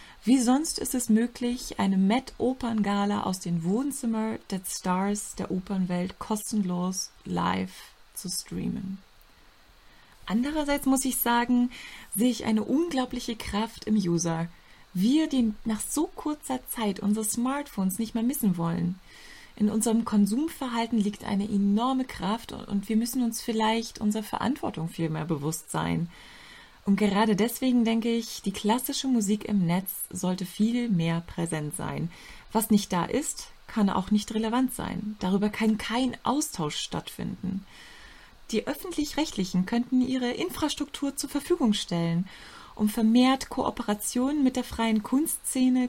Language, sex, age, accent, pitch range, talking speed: German, female, 30-49, German, 195-250 Hz, 135 wpm